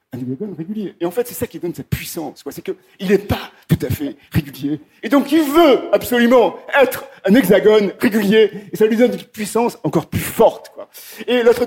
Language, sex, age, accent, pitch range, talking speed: French, male, 50-69, French, 160-230 Hz, 215 wpm